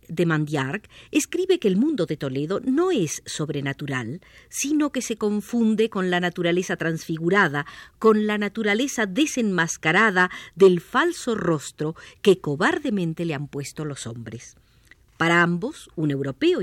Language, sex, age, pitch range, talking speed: Spanish, female, 50-69, 155-240 Hz, 135 wpm